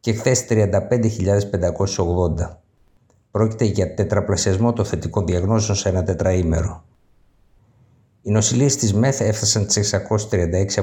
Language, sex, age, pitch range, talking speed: Greek, male, 60-79, 95-110 Hz, 105 wpm